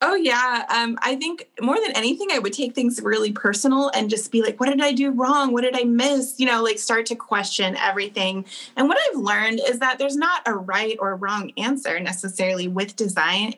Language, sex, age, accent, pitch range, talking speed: English, female, 20-39, American, 200-265 Hz, 220 wpm